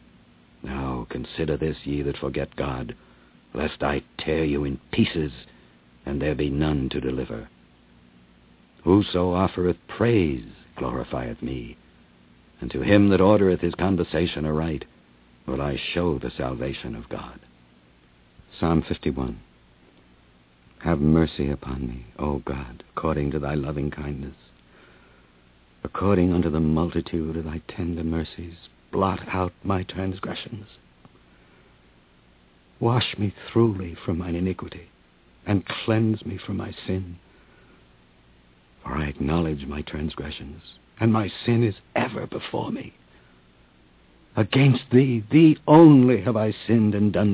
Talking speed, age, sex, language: 125 wpm, 60-79, male, English